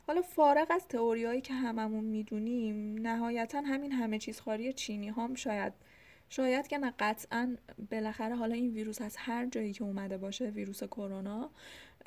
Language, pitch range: Persian, 205-260 Hz